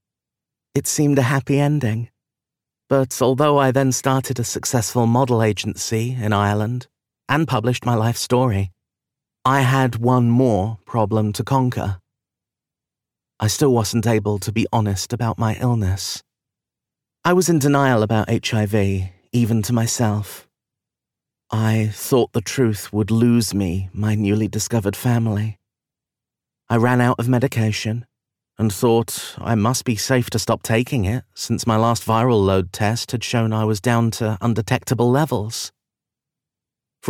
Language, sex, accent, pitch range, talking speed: English, male, British, 105-125 Hz, 140 wpm